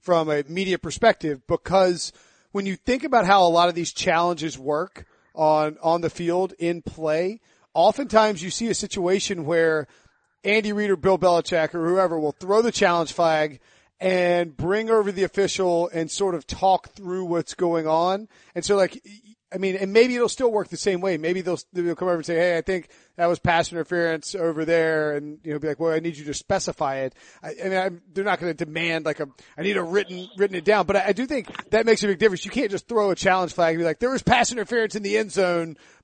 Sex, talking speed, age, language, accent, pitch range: male, 235 wpm, 40-59, English, American, 165-195 Hz